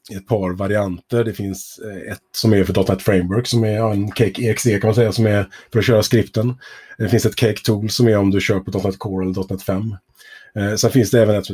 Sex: male